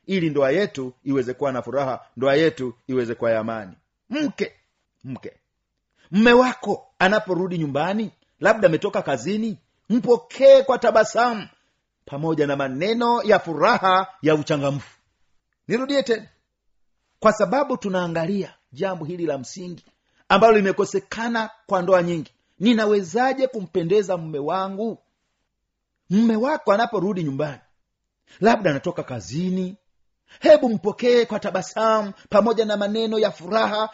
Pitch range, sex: 155-225 Hz, male